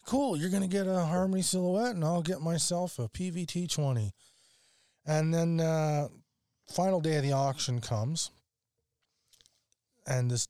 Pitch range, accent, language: 115-150 Hz, American, English